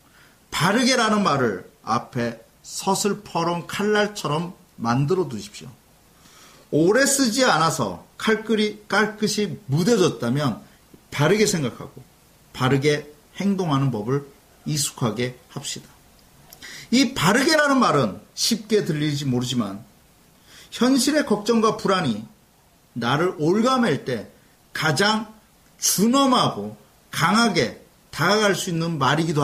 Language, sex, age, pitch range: Korean, male, 40-59, 140-215 Hz